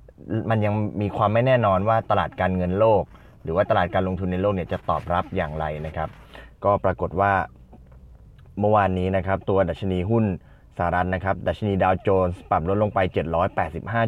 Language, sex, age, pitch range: Thai, male, 20-39, 90-110 Hz